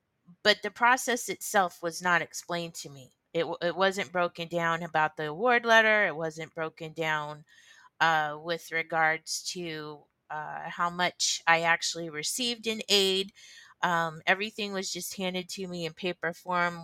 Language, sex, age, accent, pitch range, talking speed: English, female, 30-49, American, 160-190 Hz, 155 wpm